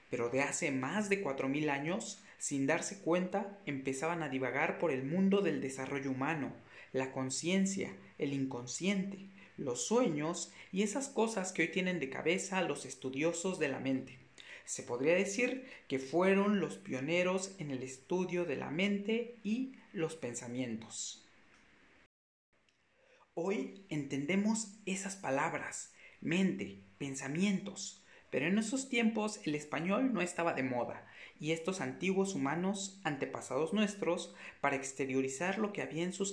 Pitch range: 135-195 Hz